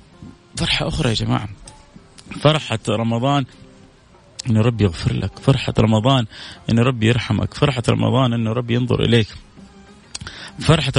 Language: Arabic